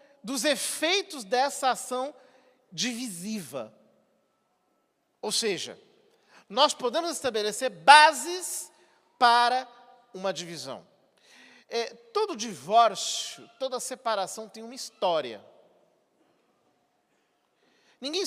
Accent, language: Brazilian, Portuguese